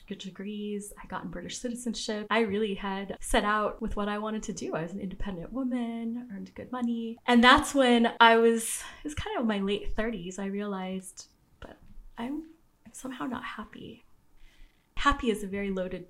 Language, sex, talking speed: English, female, 185 wpm